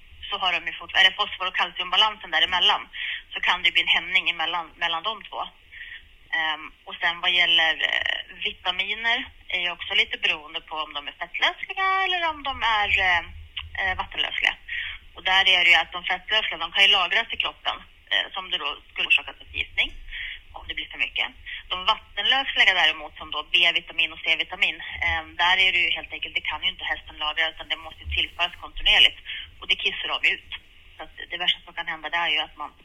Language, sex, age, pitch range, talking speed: Swedish, female, 20-39, 165-205 Hz, 195 wpm